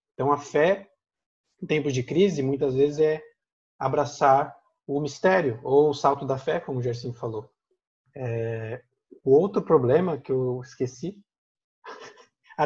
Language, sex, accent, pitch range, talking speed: Portuguese, male, Brazilian, 130-170 Hz, 140 wpm